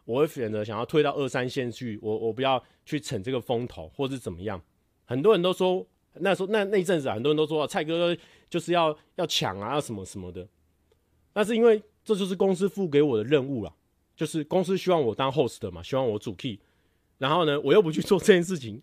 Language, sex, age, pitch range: Chinese, male, 30-49, 120-170 Hz